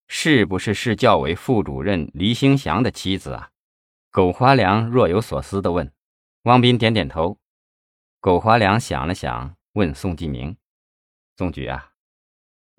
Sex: male